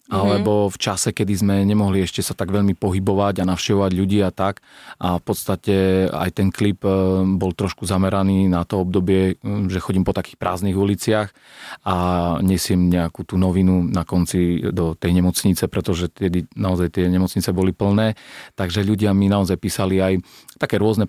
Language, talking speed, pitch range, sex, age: Slovak, 170 wpm, 95-110 Hz, male, 40-59